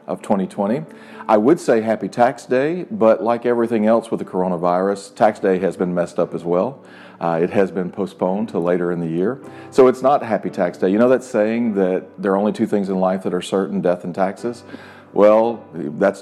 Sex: male